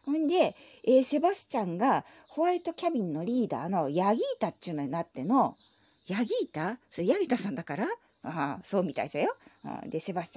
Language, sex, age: Japanese, female, 40-59